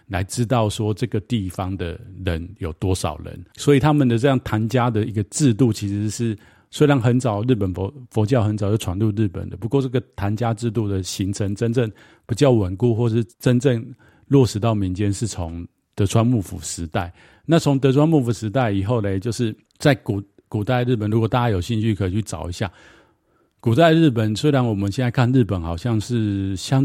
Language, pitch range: Chinese, 95-120 Hz